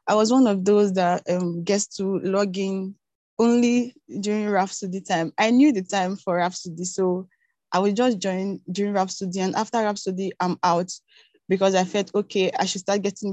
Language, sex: English, female